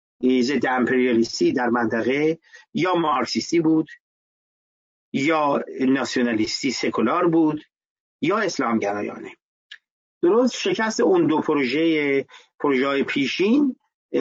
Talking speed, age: 85 wpm, 50-69